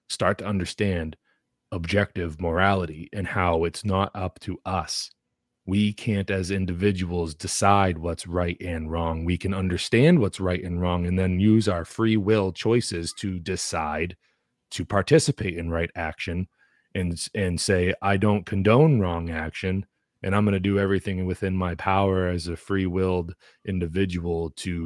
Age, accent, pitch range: 30-49, American, 85-105 Hz